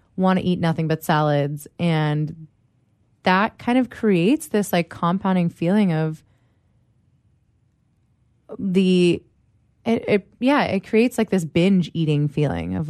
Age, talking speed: 20-39, 130 wpm